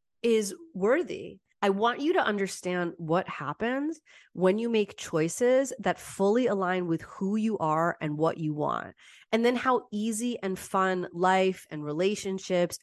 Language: English